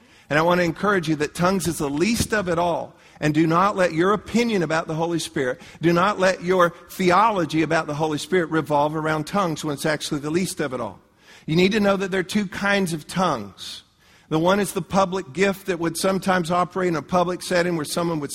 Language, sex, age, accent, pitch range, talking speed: English, male, 50-69, American, 155-185 Hz, 235 wpm